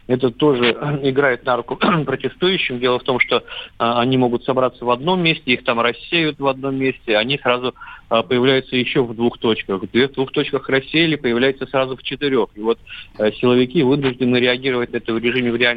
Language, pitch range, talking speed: Russian, 110-130 Hz, 180 wpm